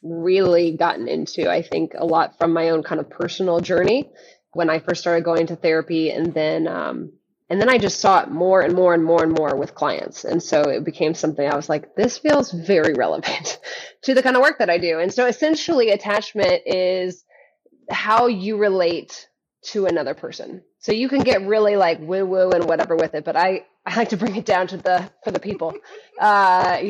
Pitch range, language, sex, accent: 170-210 Hz, English, female, American